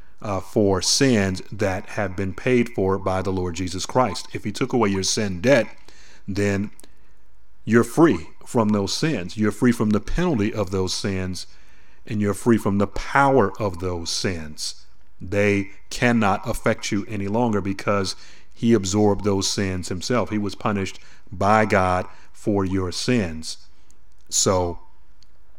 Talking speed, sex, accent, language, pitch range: 150 wpm, male, American, English, 95-110 Hz